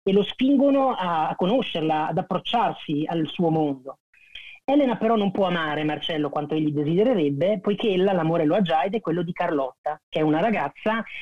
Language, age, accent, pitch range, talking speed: Italian, 30-49, native, 155-205 Hz, 180 wpm